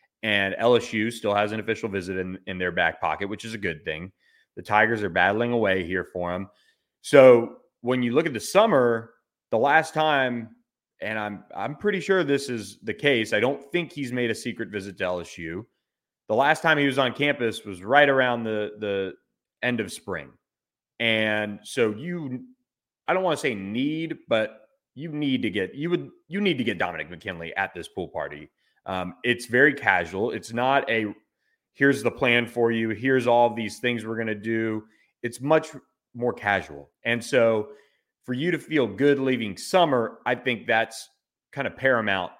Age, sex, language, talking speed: 30-49, male, English, 190 wpm